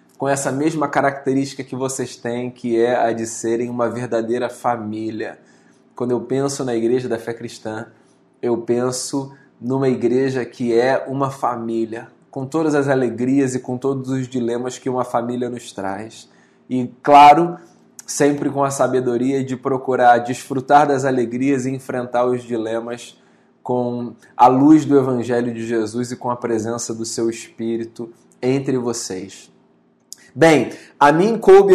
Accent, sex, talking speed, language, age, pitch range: Brazilian, male, 150 wpm, Portuguese, 20-39, 120-150 Hz